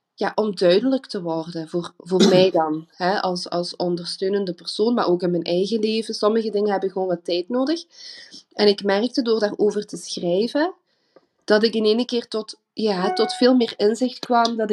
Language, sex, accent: Dutch, female, Dutch